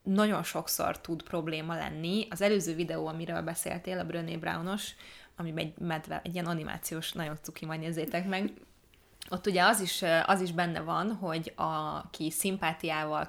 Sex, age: female, 20-39